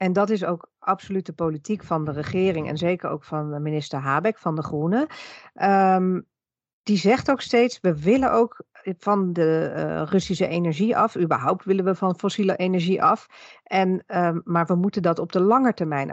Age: 40-59